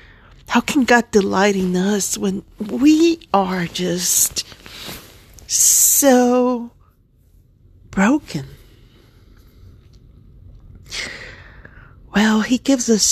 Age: 40-59